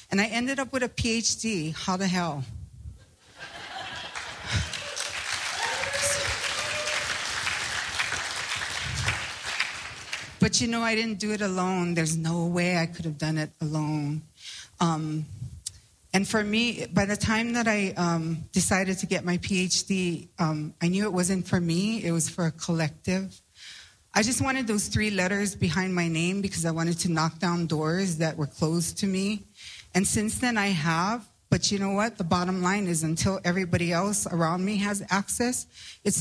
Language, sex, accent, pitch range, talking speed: English, female, American, 160-205 Hz, 160 wpm